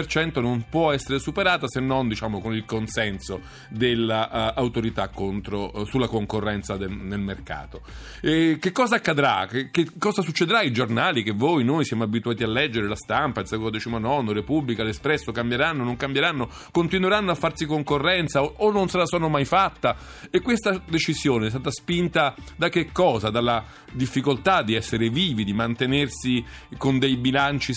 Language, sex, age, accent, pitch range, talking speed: Italian, male, 40-59, native, 115-155 Hz, 160 wpm